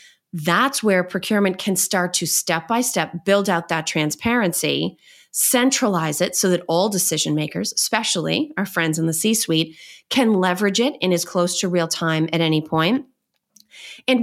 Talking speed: 150 wpm